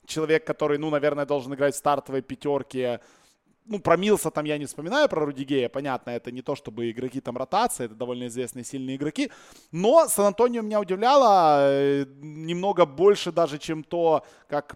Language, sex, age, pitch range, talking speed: Russian, male, 20-39, 130-160 Hz, 165 wpm